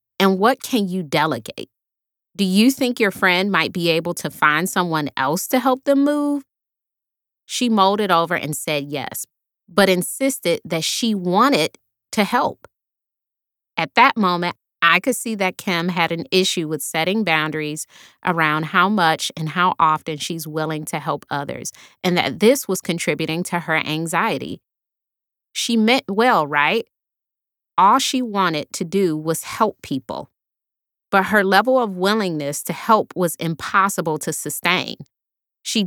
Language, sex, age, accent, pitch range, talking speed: English, female, 30-49, American, 160-215 Hz, 150 wpm